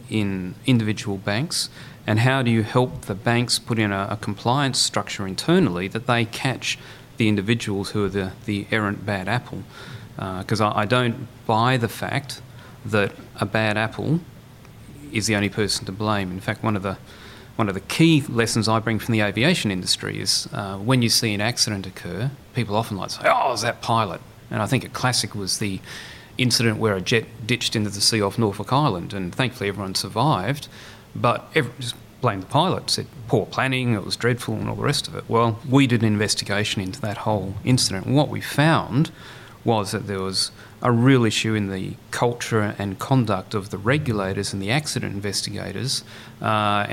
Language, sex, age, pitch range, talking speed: English, male, 30-49, 105-125 Hz, 195 wpm